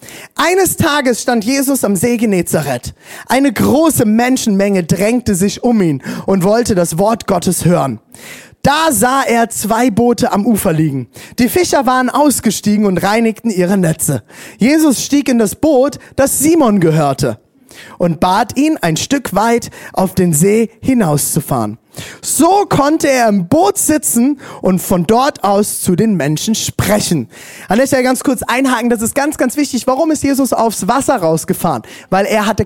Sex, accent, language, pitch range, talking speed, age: male, German, German, 200-265 Hz, 160 wpm, 20-39